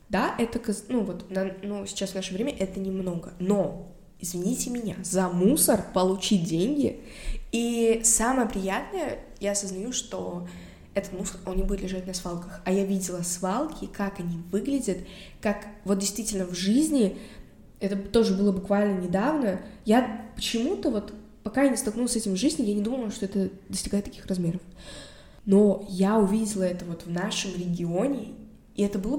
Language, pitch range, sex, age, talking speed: Russian, 190-220 Hz, female, 20-39, 160 wpm